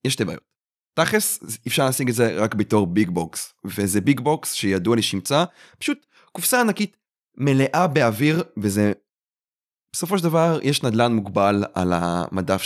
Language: Hebrew